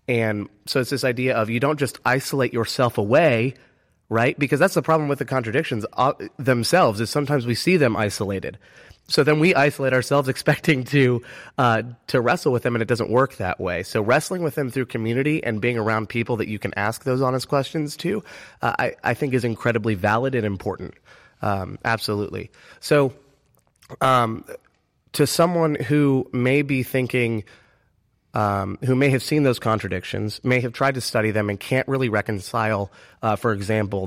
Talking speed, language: 180 wpm, English